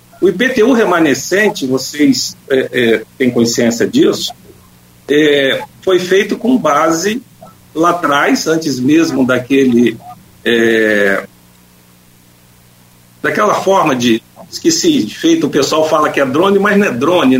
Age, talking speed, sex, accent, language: 50-69, 125 wpm, male, Brazilian, Portuguese